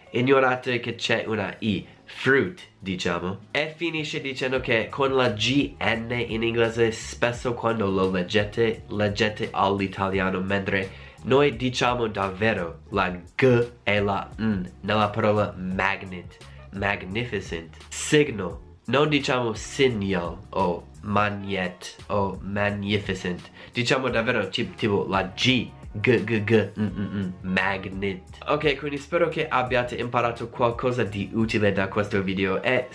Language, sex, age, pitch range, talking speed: Italian, male, 20-39, 95-125 Hz, 120 wpm